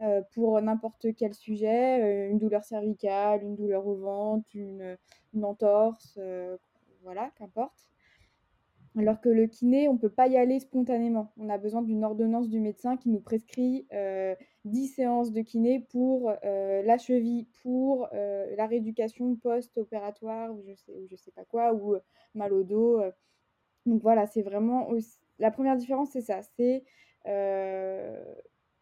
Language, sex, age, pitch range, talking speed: French, female, 20-39, 205-250 Hz, 160 wpm